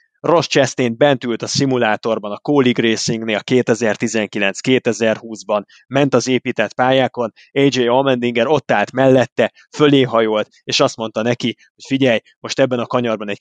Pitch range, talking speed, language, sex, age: 115-140 Hz, 145 wpm, Hungarian, male, 20-39